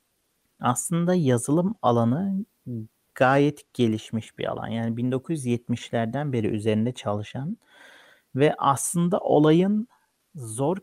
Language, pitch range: Turkish, 115-155 Hz